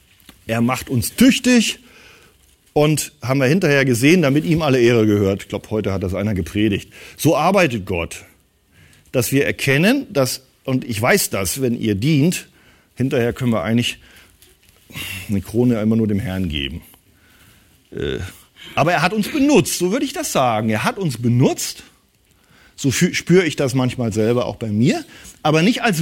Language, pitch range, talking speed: German, 115-180 Hz, 165 wpm